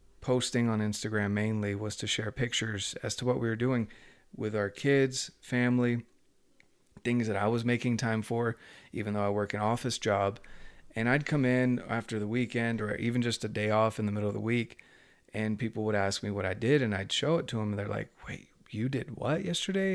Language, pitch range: English, 105-130 Hz